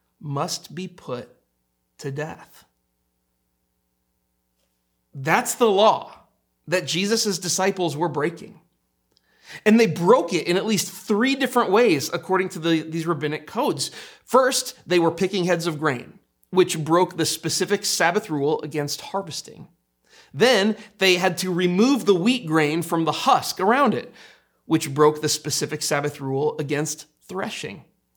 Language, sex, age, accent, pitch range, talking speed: English, male, 30-49, American, 135-190 Hz, 135 wpm